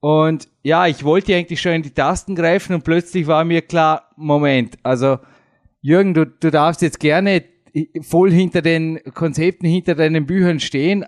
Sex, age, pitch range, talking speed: male, 20-39, 140-170 Hz, 170 wpm